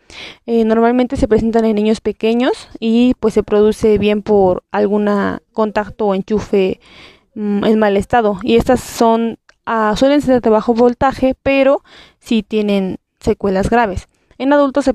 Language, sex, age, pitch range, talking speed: Spanish, female, 20-39, 205-235 Hz, 155 wpm